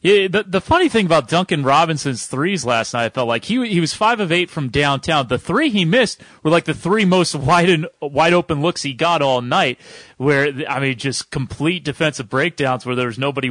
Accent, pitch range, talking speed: American, 125-155 Hz, 225 wpm